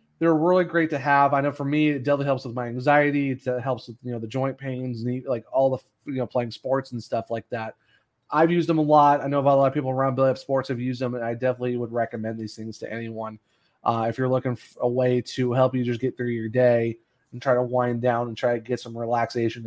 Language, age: English, 30-49